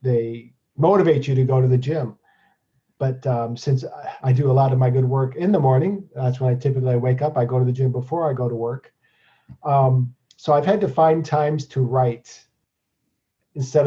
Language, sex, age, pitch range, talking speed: English, male, 40-59, 125-145 Hz, 210 wpm